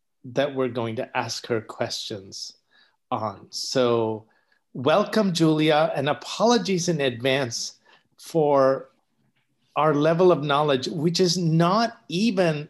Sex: male